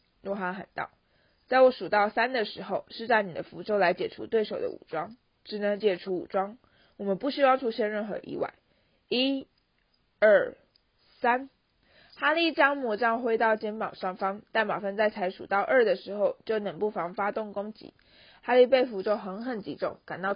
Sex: female